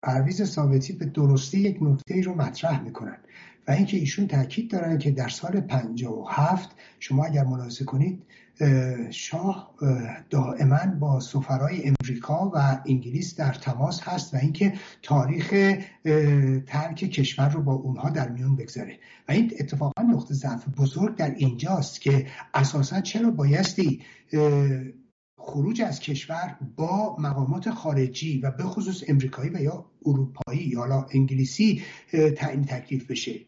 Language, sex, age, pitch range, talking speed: English, male, 60-79, 140-190 Hz, 135 wpm